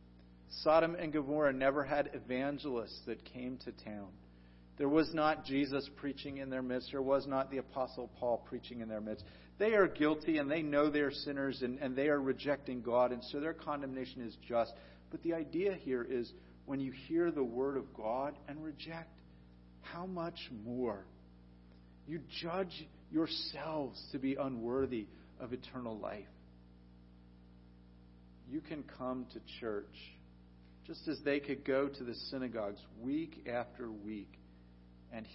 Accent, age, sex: American, 40-59, male